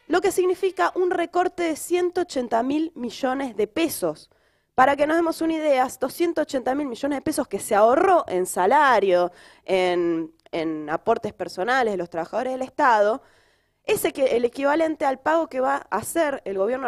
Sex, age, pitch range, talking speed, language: female, 20-39, 205-305 Hz, 165 wpm, Spanish